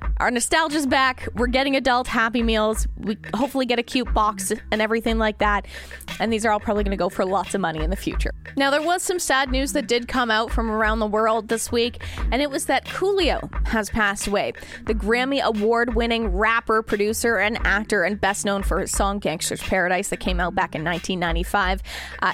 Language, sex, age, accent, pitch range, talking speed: English, female, 20-39, American, 210-275 Hz, 210 wpm